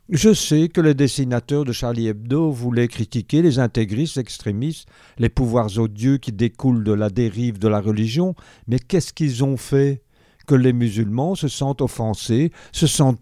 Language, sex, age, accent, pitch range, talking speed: French, male, 50-69, French, 115-155 Hz, 170 wpm